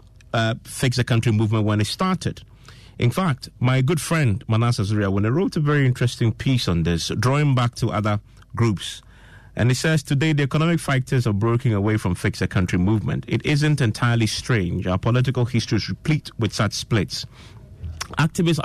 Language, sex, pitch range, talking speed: English, male, 100-130 Hz, 185 wpm